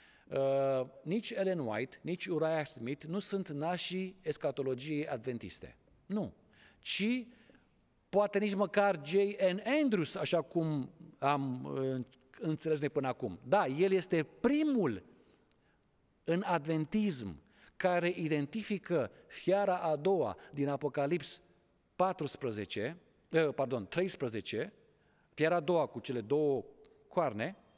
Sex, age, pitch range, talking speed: male, 50-69, 140-195 Hz, 110 wpm